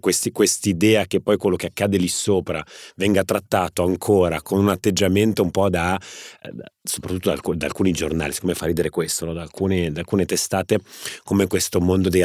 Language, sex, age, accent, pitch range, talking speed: Italian, male, 30-49, native, 85-100 Hz, 195 wpm